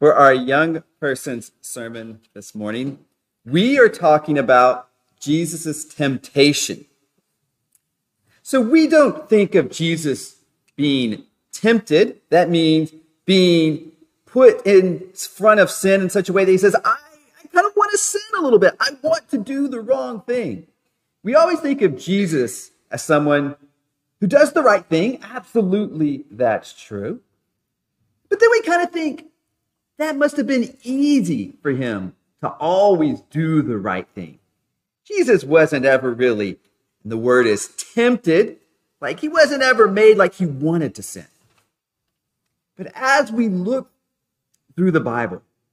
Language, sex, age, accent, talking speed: English, male, 40-59, American, 145 wpm